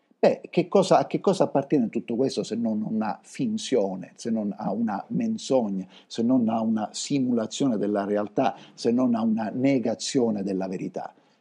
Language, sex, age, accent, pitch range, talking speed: Italian, male, 50-69, native, 110-150 Hz, 175 wpm